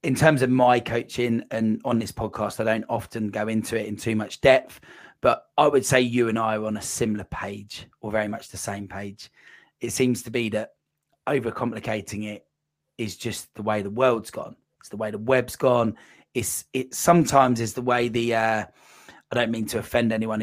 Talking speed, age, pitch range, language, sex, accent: 210 wpm, 30-49, 110-125 Hz, English, male, British